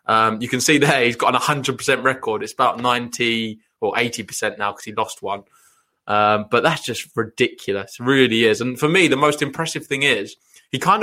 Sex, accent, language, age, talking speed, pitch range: male, British, English, 20-39, 205 wpm, 125-150 Hz